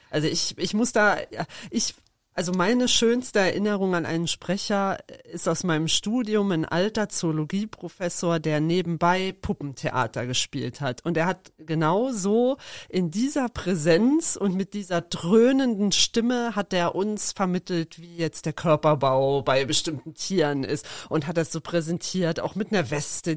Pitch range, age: 160-205 Hz, 40-59